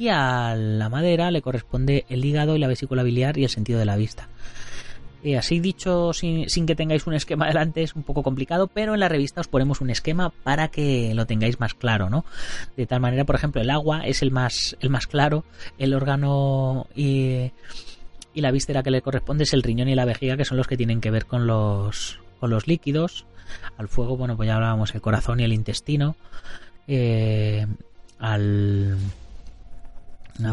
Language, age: Spanish, 30-49